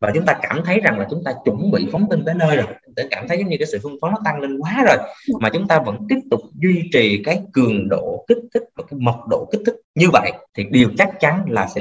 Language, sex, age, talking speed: Vietnamese, male, 20-39, 290 wpm